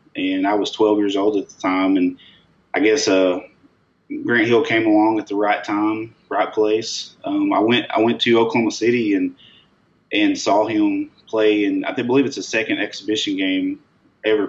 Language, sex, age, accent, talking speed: English, male, 20-39, American, 185 wpm